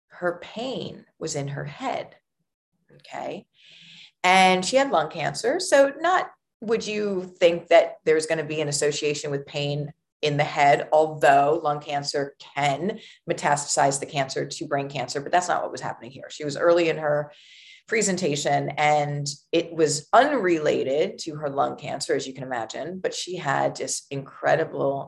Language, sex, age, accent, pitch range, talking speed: English, female, 30-49, American, 145-185 Hz, 165 wpm